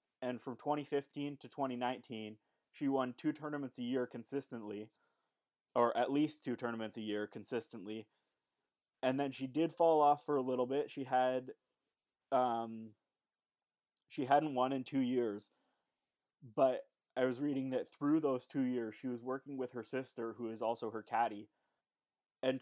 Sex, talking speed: male, 165 wpm